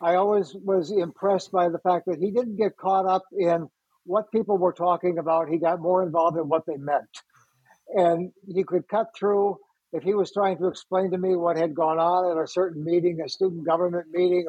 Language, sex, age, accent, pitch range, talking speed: English, male, 60-79, American, 165-190 Hz, 215 wpm